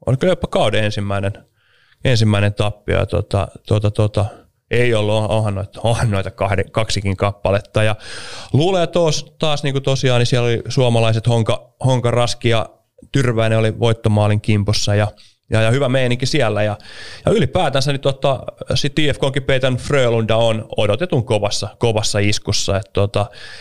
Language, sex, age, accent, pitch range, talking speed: Finnish, male, 30-49, native, 105-125 Hz, 135 wpm